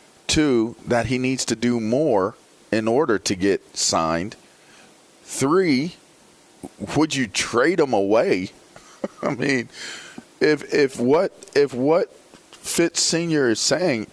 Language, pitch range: English, 100-145 Hz